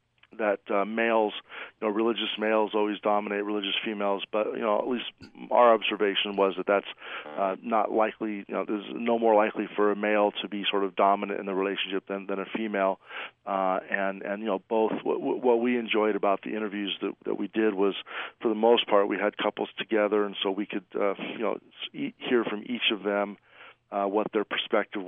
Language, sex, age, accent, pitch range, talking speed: English, male, 40-59, American, 100-110 Hz, 210 wpm